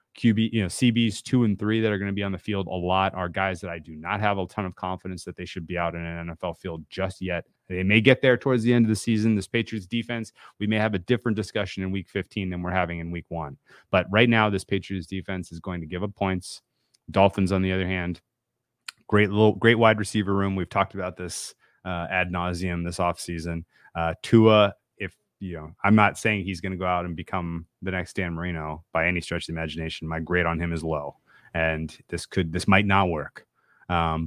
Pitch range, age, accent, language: 85-105 Hz, 30-49, American, English